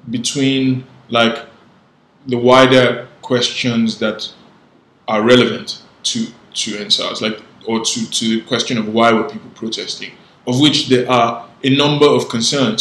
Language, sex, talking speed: English, male, 140 wpm